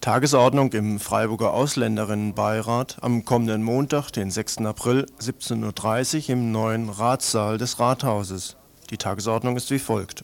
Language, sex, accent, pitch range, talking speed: German, male, German, 110-135 Hz, 130 wpm